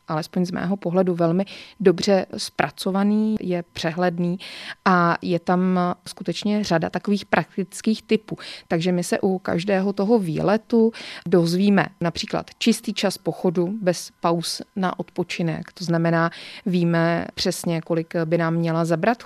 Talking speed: 130 wpm